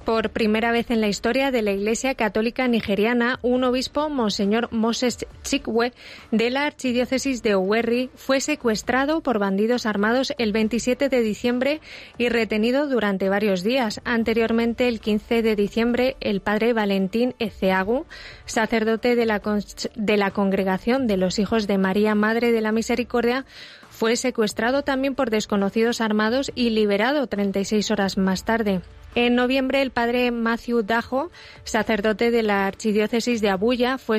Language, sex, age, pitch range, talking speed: Spanish, female, 20-39, 215-250 Hz, 145 wpm